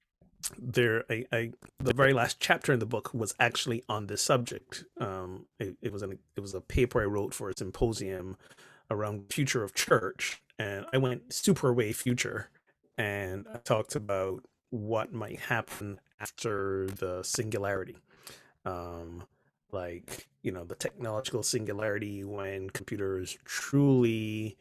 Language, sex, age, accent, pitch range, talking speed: English, male, 30-49, American, 100-125 Hz, 145 wpm